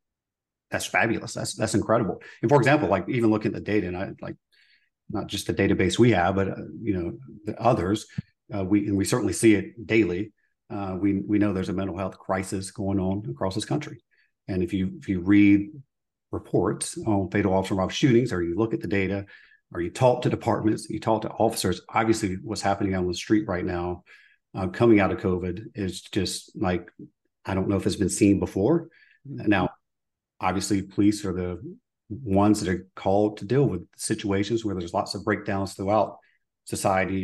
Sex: male